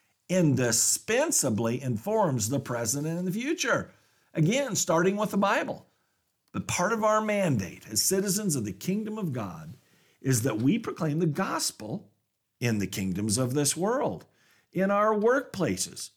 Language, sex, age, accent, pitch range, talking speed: English, male, 50-69, American, 125-205 Hz, 145 wpm